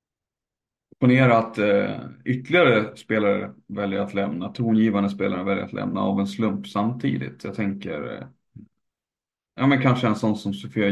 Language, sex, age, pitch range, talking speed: Swedish, male, 30-49, 105-120 Hz, 145 wpm